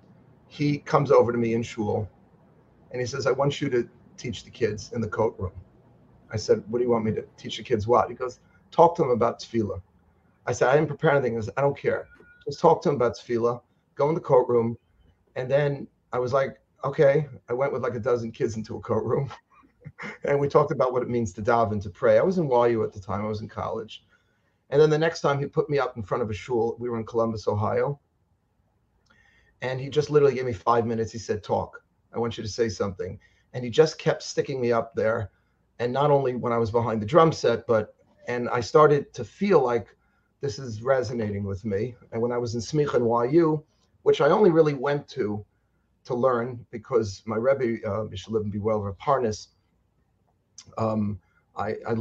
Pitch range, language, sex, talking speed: 105-135 Hz, English, male, 220 wpm